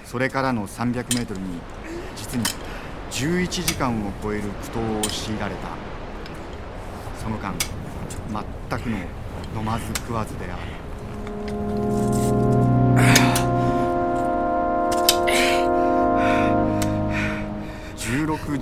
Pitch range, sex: 95-120 Hz, male